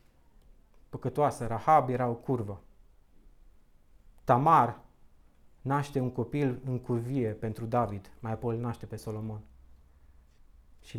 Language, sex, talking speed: Romanian, male, 105 wpm